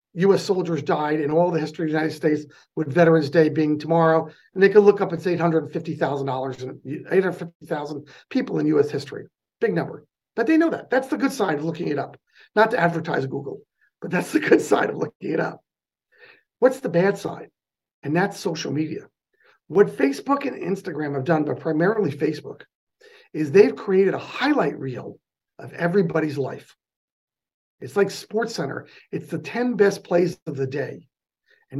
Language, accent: English, American